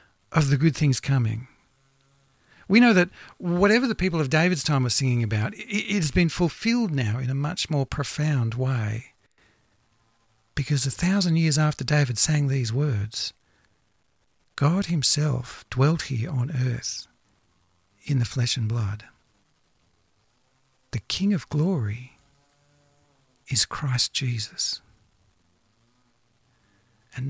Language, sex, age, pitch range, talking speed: English, male, 60-79, 115-155 Hz, 125 wpm